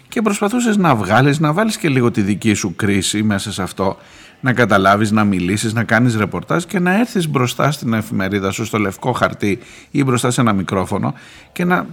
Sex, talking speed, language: male, 195 wpm, Greek